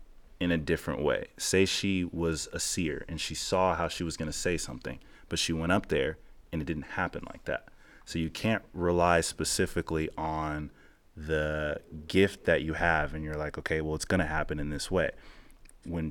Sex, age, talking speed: male, 30-49, 200 wpm